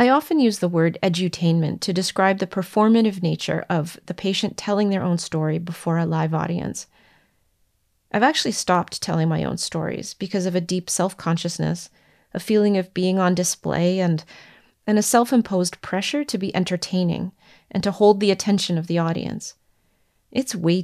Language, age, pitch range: English, 30-49, 175-210 Hz